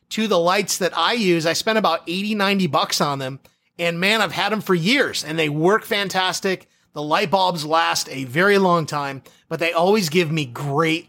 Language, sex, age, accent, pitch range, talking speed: English, male, 30-49, American, 160-195 Hz, 210 wpm